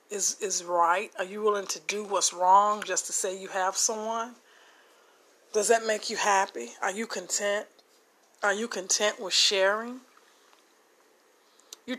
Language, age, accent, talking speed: English, 40-59, American, 150 wpm